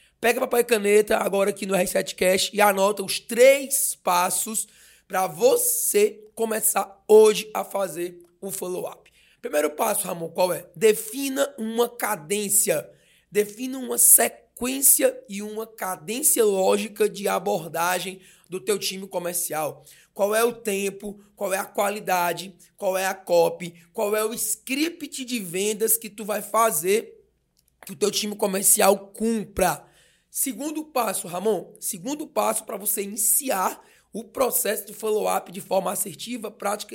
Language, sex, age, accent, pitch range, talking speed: Portuguese, male, 20-39, Brazilian, 195-235 Hz, 145 wpm